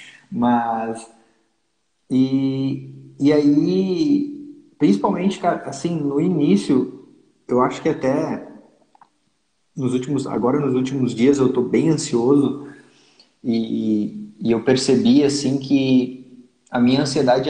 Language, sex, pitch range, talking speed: Portuguese, male, 125-155 Hz, 110 wpm